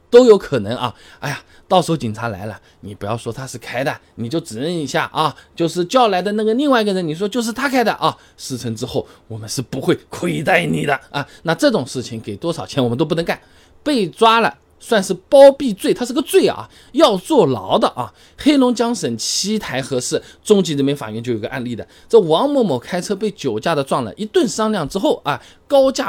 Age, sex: 20-39, male